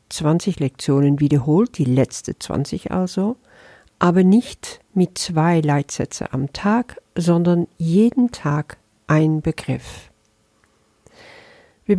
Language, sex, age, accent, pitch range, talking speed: German, female, 50-69, German, 145-195 Hz, 100 wpm